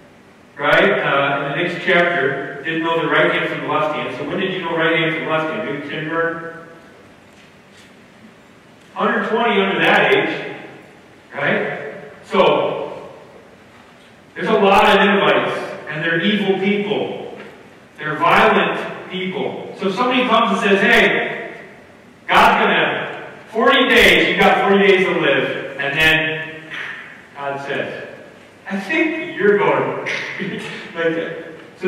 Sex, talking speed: male, 135 wpm